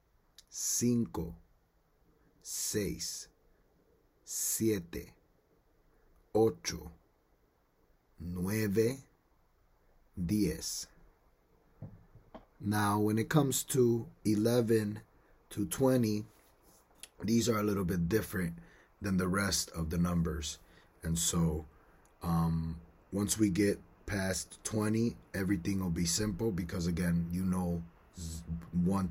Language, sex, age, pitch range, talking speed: English, male, 30-49, 85-105 Hz, 90 wpm